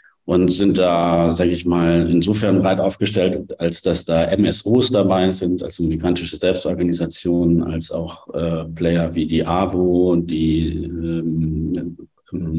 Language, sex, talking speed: German, male, 135 wpm